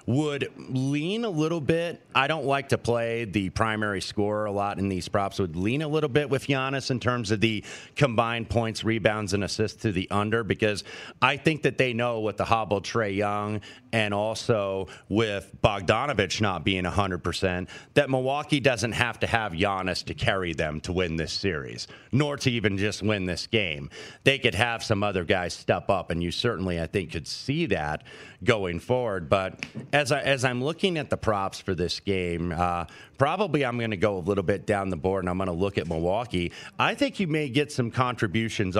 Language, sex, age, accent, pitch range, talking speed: English, male, 30-49, American, 95-125 Hz, 205 wpm